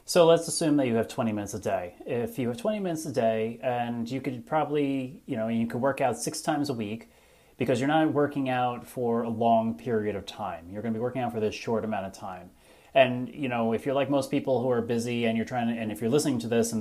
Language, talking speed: English, 270 wpm